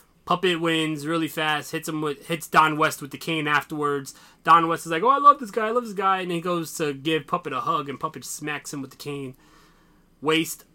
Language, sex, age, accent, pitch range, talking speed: English, male, 20-39, American, 145-180 Hz, 240 wpm